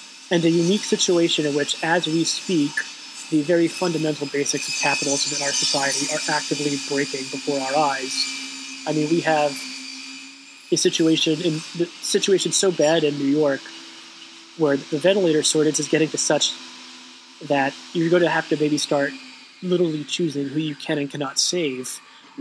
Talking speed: 170 wpm